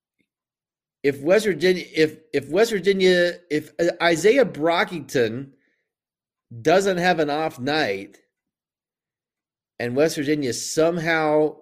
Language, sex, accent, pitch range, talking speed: English, male, American, 120-165 Hz, 100 wpm